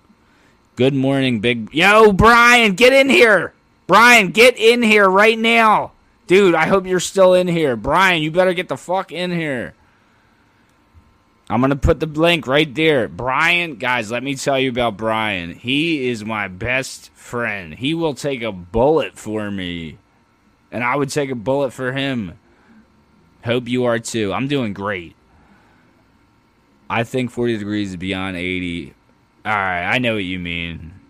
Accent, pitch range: American, 100-140 Hz